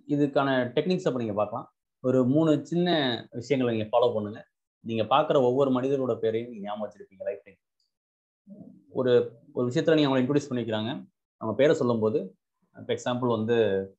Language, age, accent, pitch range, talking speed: Tamil, 20-39, native, 110-150 Hz, 145 wpm